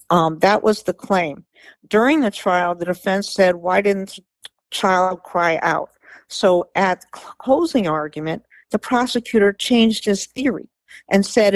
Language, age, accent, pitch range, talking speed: English, 50-69, American, 175-215 Hz, 145 wpm